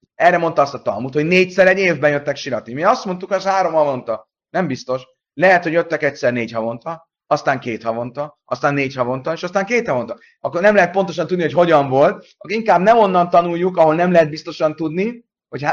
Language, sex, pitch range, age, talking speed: Hungarian, male, 130-185 Hz, 30-49, 205 wpm